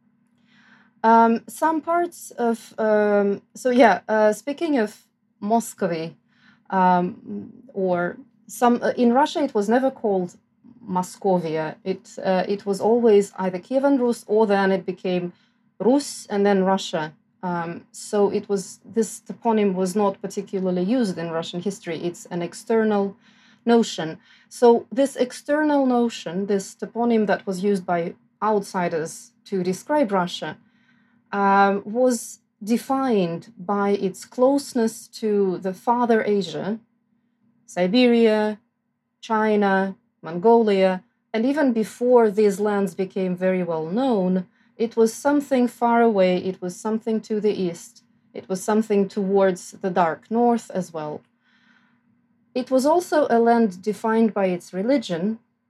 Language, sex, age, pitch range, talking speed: Czech, female, 30-49, 190-235 Hz, 130 wpm